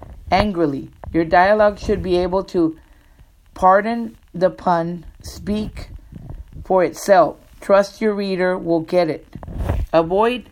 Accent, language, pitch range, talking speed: American, English, 160-195 Hz, 115 wpm